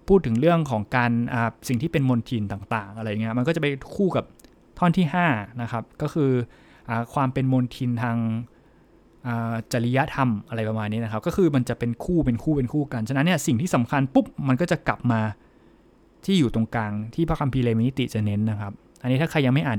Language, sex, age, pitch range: English, male, 20-39, 115-140 Hz